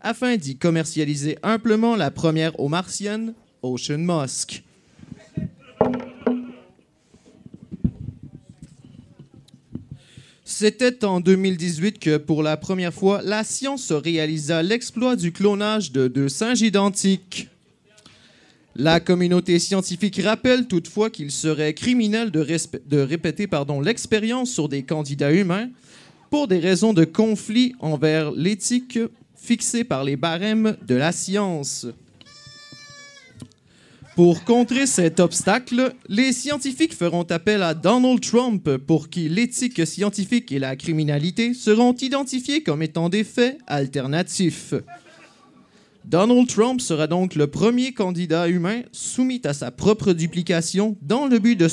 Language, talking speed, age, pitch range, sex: French, 120 wpm, 30-49, 155-225 Hz, male